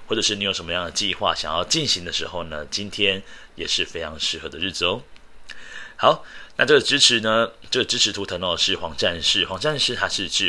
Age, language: 30-49, Chinese